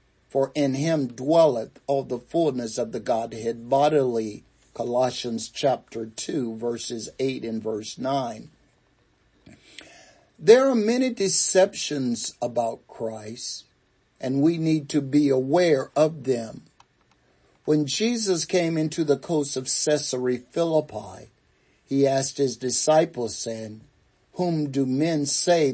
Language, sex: English, male